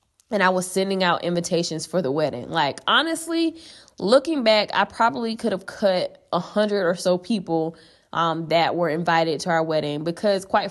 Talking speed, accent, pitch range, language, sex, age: 180 wpm, American, 165-210 Hz, English, female, 20-39